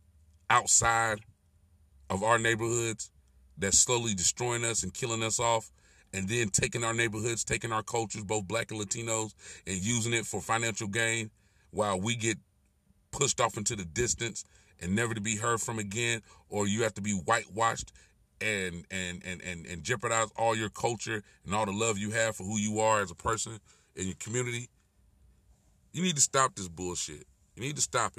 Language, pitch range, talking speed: English, 95-115 Hz, 180 wpm